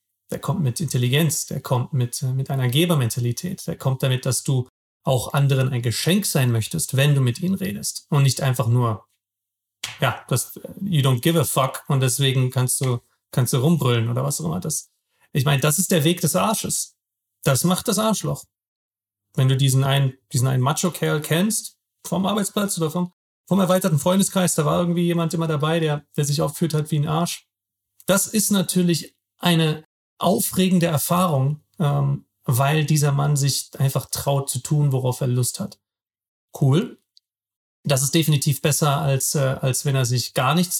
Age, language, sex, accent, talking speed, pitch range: 40-59, German, male, German, 180 wpm, 125-165 Hz